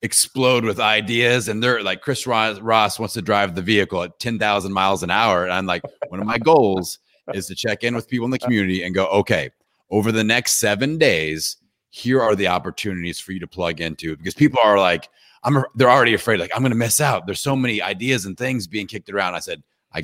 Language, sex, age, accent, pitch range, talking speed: English, male, 30-49, American, 85-110 Hz, 230 wpm